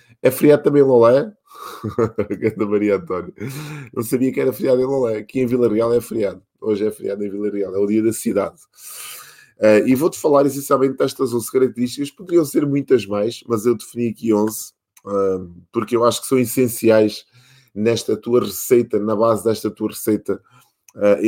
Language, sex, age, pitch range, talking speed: Portuguese, male, 20-39, 110-130 Hz, 180 wpm